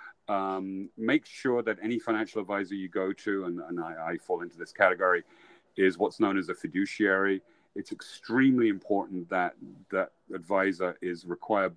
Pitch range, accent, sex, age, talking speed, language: 85-100 Hz, British, male, 40-59, 165 wpm, English